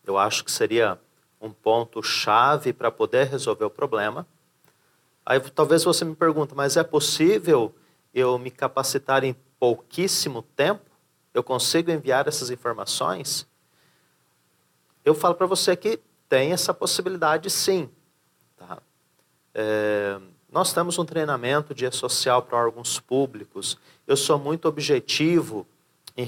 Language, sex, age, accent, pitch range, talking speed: Portuguese, male, 40-59, Brazilian, 115-160 Hz, 125 wpm